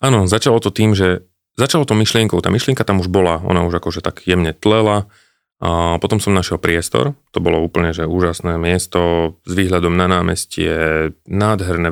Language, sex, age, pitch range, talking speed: Slovak, male, 30-49, 85-100 Hz, 175 wpm